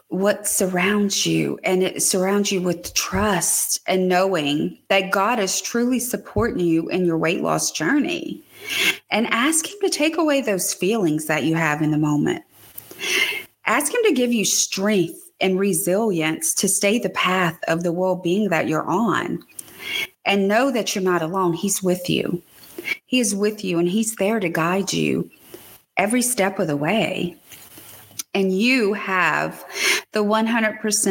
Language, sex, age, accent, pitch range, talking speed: English, female, 30-49, American, 175-220 Hz, 160 wpm